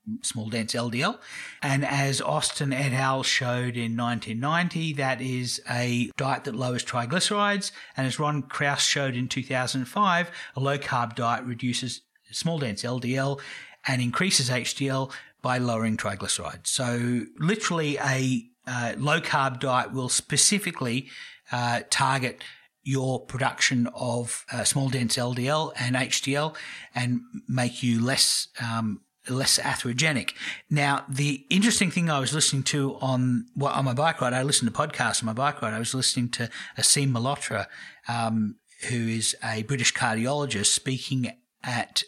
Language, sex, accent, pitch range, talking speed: English, male, Australian, 120-145 Hz, 145 wpm